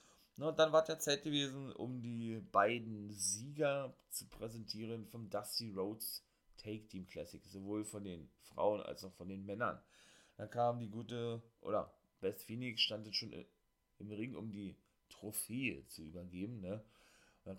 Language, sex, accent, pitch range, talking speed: German, male, German, 100-120 Hz, 165 wpm